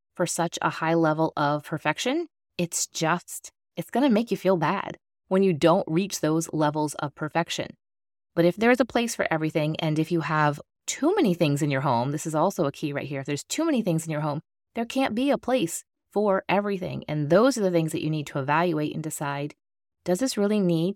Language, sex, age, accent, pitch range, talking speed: English, female, 30-49, American, 150-195 Hz, 230 wpm